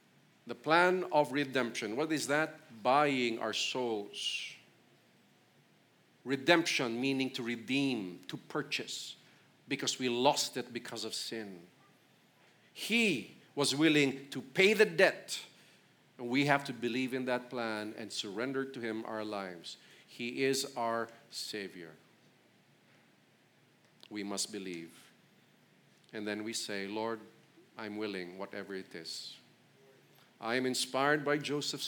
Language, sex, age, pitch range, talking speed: English, male, 50-69, 115-150 Hz, 125 wpm